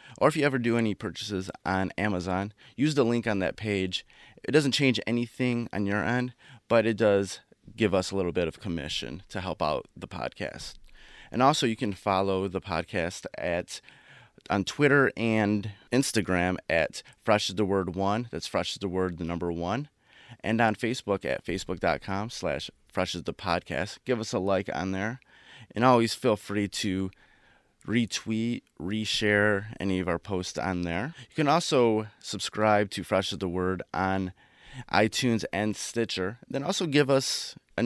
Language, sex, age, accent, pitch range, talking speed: English, male, 30-49, American, 95-135 Hz, 175 wpm